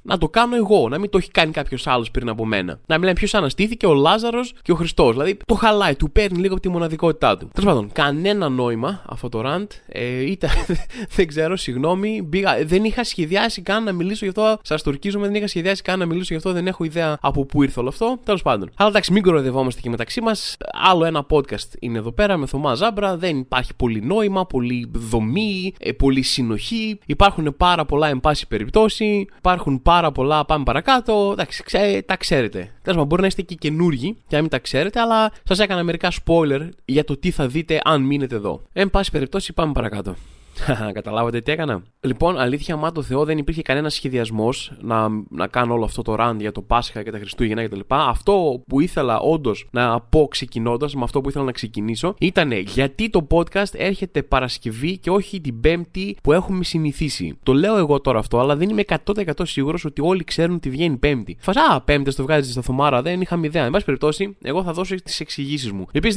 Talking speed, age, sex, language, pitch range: 205 wpm, 20-39, male, Greek, 130-190 Hz